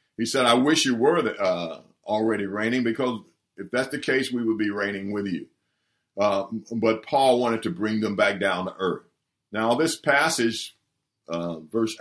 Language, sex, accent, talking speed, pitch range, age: English, male, American, 180 wpm, 115-160 Hz, 50-69